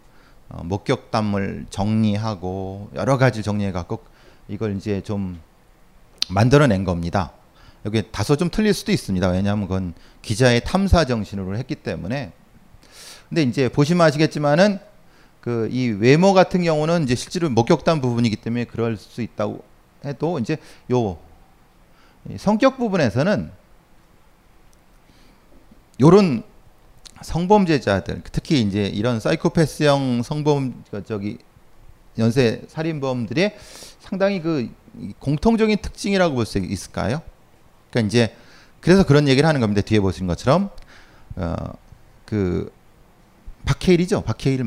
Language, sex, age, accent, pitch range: Korean, male, 30-49, native, 105-155 Hz